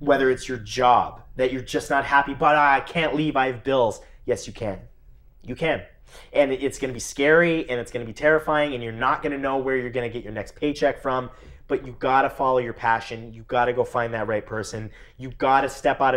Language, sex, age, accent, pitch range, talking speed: English, male, 30-49, American, 110-135 Hz, 230 wpm